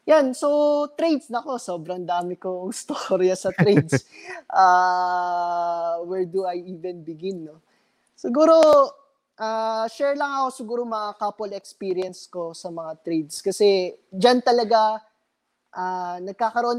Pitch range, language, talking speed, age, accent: 180-240 Hz, English, 125 wpm, 20-39, Filipino